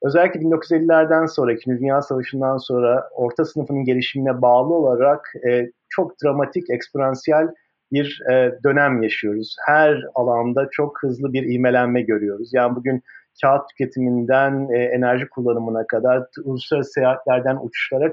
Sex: male